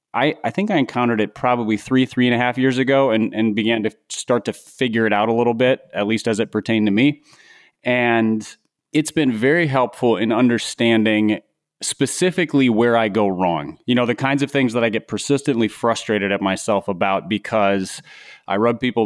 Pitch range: 105-130 Hz